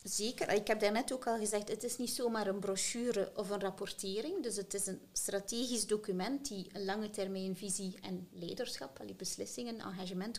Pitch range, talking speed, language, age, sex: 185-215 Hz, 180 wpm, Dutch, 30-49, female